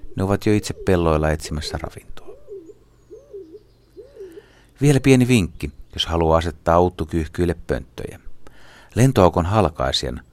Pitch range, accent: 80-105 Hz, native